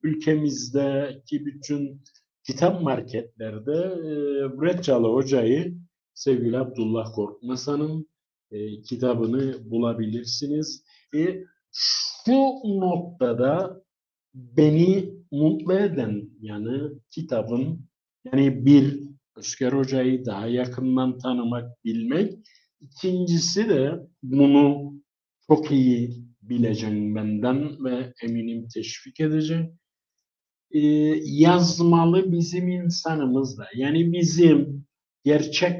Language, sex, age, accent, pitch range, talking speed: Turkish, male, 50-69, native, 120-160 Hz, 75 wpm